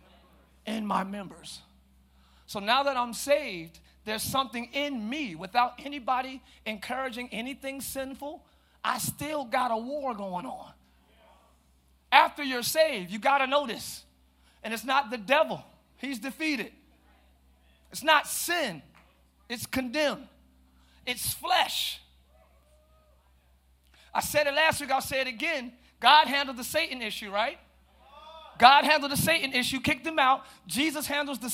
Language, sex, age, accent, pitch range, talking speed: English, male, 40-59, American, 180-270 Hz, 135 wpm